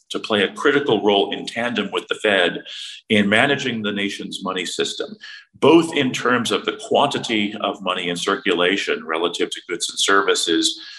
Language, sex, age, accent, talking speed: English, male, 40-59, American, 170 wpm